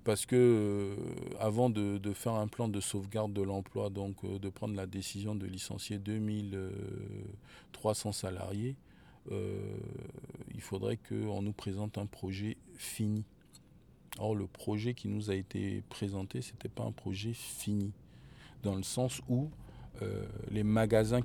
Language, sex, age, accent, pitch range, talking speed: French, male, 40-59, French, 100-130 Hz, 145 wpm